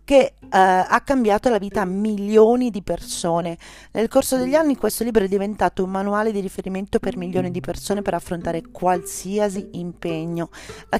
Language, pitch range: Italian, 175-210 Hz